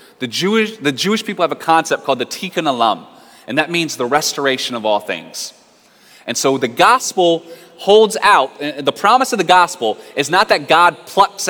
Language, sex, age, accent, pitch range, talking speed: English, male, 20-39, American, 135-180 Hz, 190 wpm